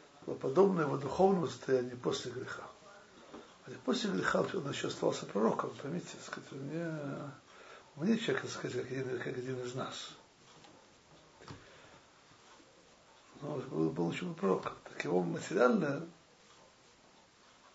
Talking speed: 120 wpm